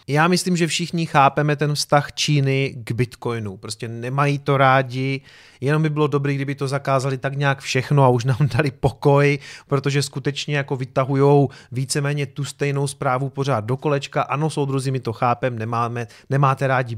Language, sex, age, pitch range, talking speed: Czech, male, 30-49, 130-150 Hz, 170 wpm